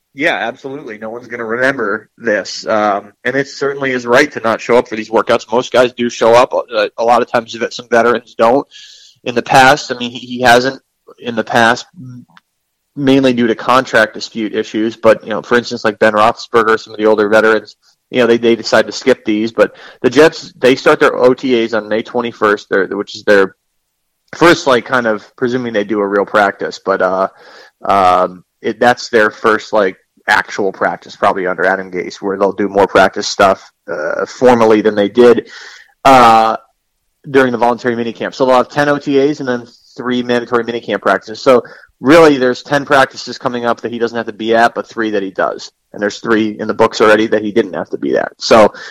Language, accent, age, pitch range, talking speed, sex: English, American, 20-39, 110-125 Hz, 210 wpm, male